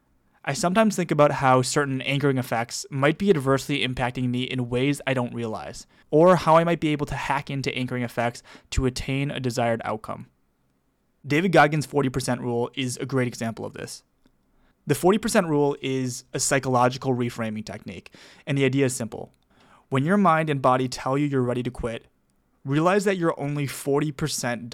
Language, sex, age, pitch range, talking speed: English, male, 20-39, 125-150 Hz, 175 wpm